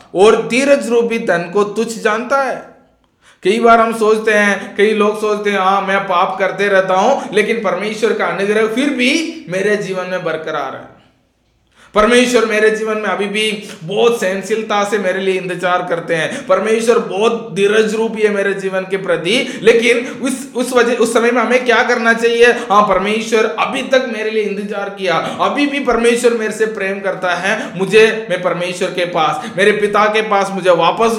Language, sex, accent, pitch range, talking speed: Hindi, male, native, 185-225 Hz, 185 wpm